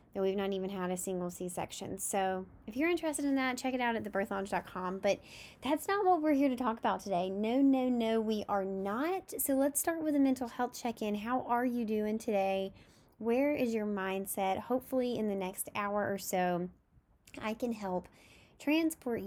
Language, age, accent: English, 10-29, American